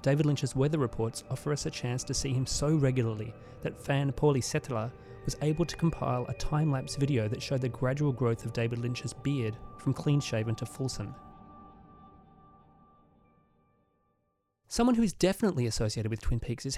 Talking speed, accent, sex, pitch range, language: 165 wpm, Australian, male, 115-145 Hz, English